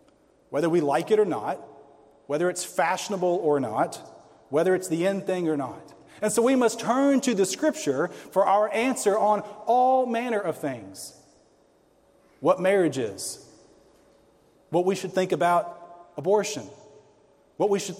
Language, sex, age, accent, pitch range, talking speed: English, male, 40-59, American, 140-200 Hz, 155 wpm